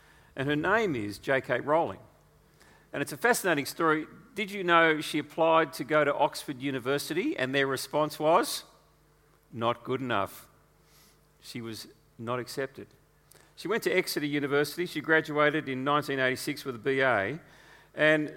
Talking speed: 145 wpm